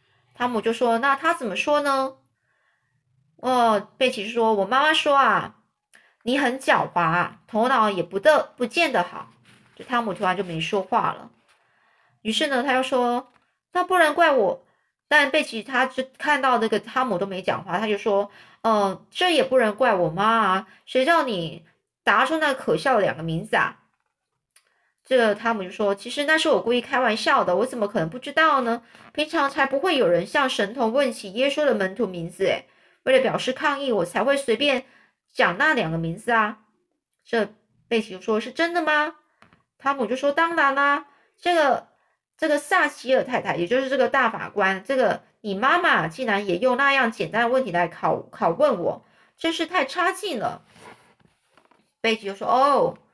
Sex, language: female, Chinese